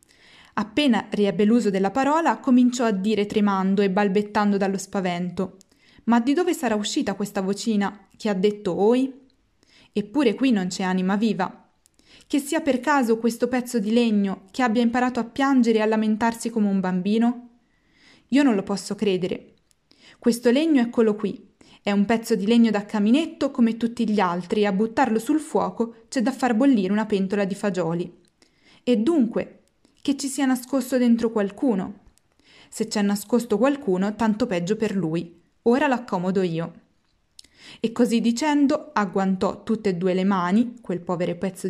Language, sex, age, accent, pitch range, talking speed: Italian, female, 20-39, native, 200-250 Hz, 165 wpm